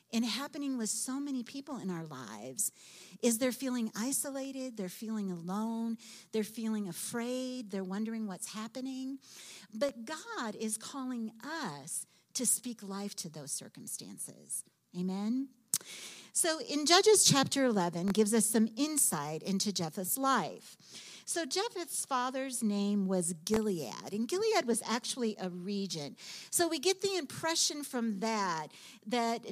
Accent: American